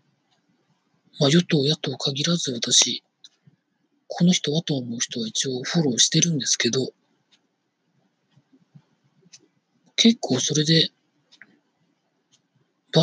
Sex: male